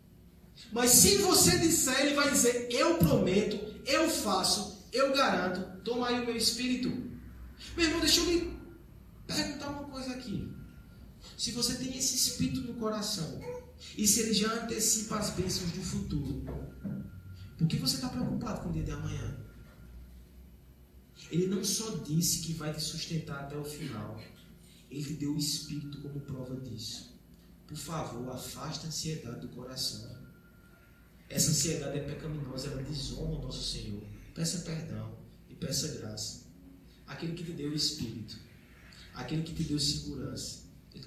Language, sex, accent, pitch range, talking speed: Portuguese, male, Brazilian, 115-185 Hz, 150 wpm